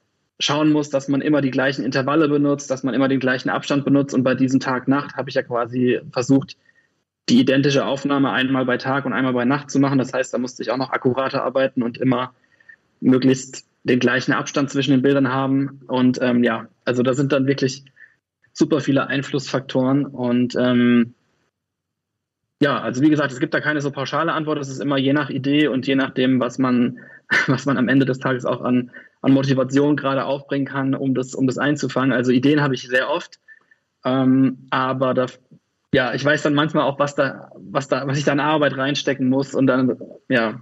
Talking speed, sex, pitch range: 205 wpm, male, 130-140 Hz